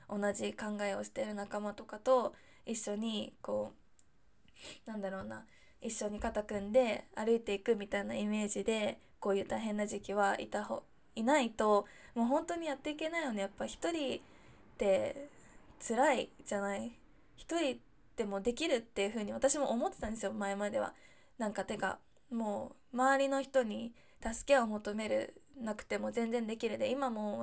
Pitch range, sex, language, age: 205-260 Hz, female, Japanese, 20-39